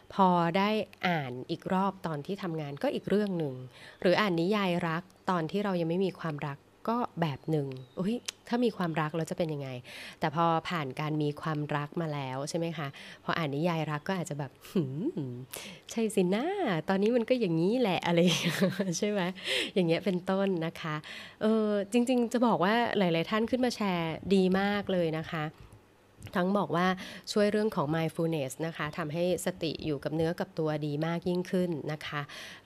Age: 20-39